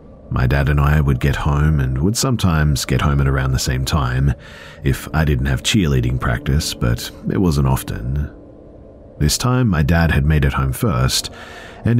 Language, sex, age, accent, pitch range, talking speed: English, male, 40-59, Australian, 65-90 Hz, 185 wpm